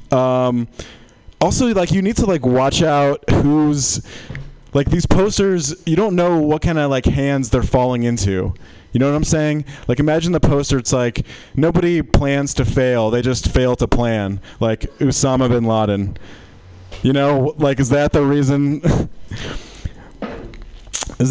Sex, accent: male, American